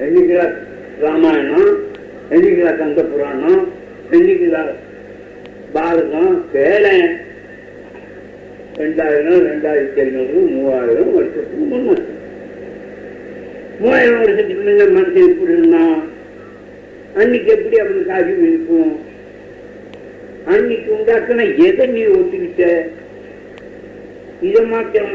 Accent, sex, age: native, male, 50-69